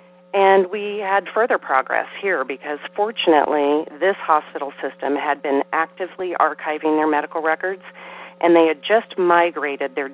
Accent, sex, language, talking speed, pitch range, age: American, female, English, 140 wpm, 145-180 Hz, 40-59